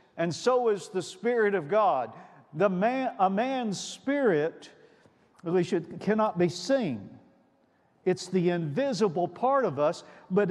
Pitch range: 160-220 Hz